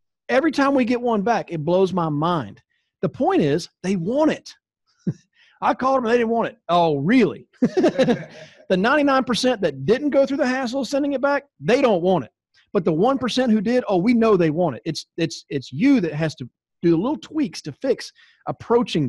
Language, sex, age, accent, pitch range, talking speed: English, male, 40-59, American, 165-235 Hz, 205 wpm